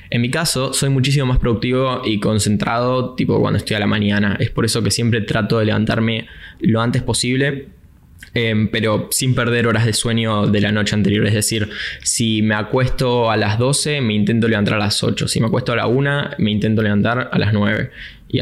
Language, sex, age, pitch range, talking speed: Spanish, male, 10-29, 110-130 Hz, 210 wpm